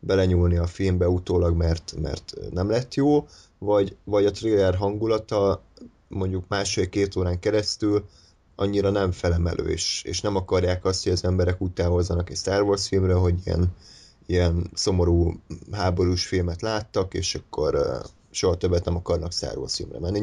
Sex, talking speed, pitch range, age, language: male, 155 wpm, 90-105 Hz, 20-39, Hungarian